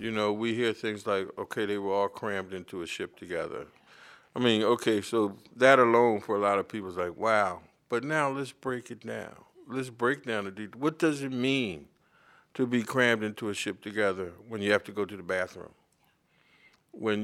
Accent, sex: American, male